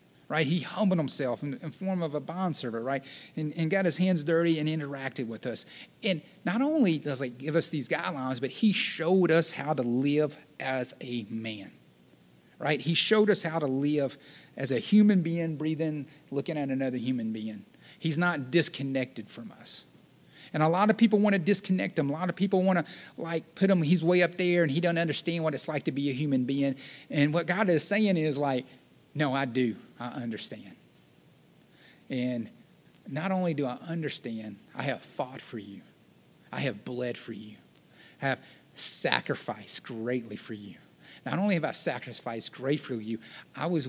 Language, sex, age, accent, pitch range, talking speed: English, male, 30-49, American, 125-170 Hz, 195 wpm